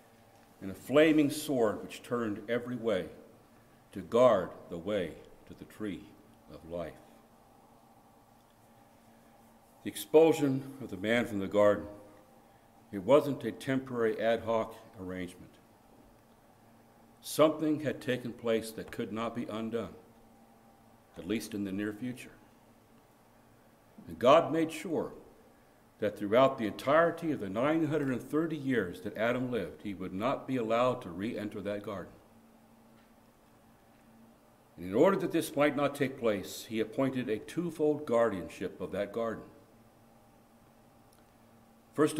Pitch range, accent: 110-135 Hz, American